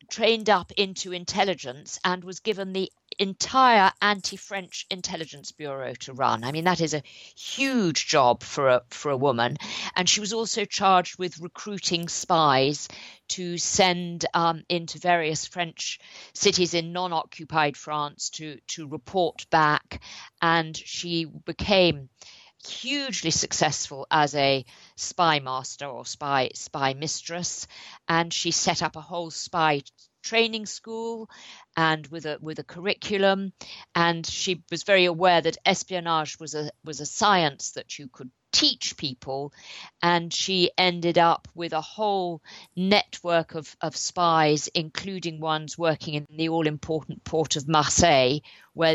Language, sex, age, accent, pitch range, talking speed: English, female, 50-69, British, 150-185 Hz, 140 wpm